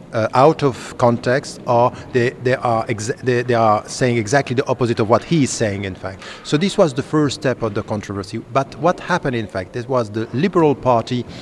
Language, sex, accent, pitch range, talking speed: English, male, French, 110-130 Hz, 220 wpm